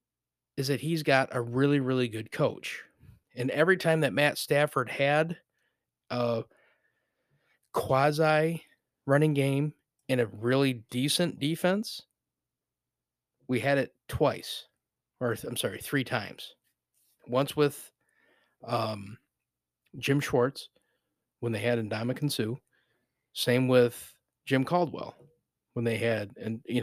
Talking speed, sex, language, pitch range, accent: 120 wpm, male, English, 115-145 Hz, American